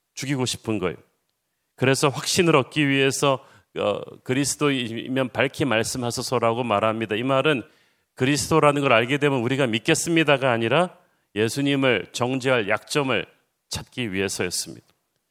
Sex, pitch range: male, 115-150 Hz